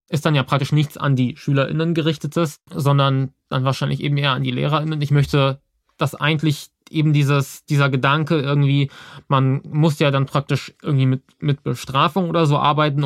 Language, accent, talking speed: German, German, 175 wpm